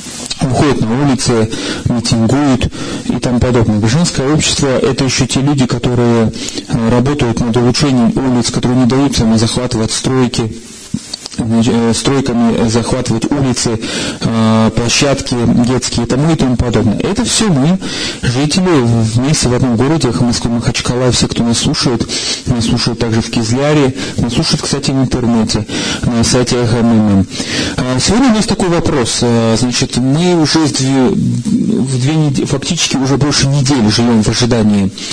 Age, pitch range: 30-49, 115-135 Hz